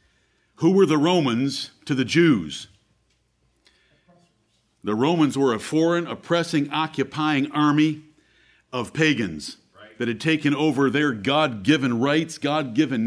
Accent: American